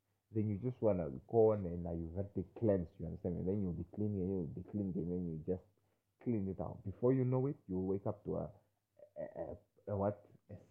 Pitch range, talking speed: 95-110 Hz, 245 wpm